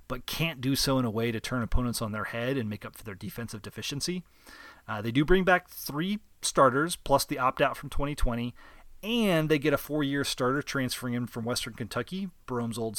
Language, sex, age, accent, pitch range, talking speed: English, male, 30-49, American, 110-145 Hz, 215 wpm